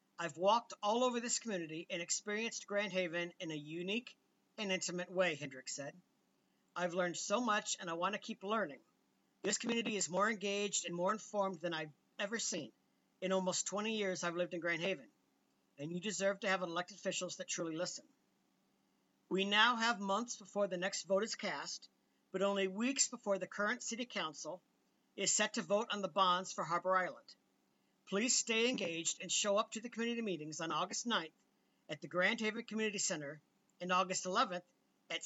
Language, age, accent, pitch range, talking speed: English, 50-69, American, 180-215 Hz, 185 wpm